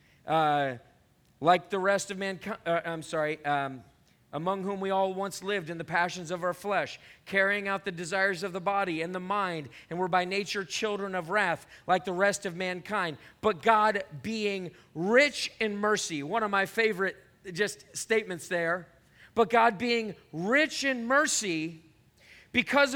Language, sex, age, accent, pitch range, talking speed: English, male, 40-59, American, 185-245 Hz, 165 wpm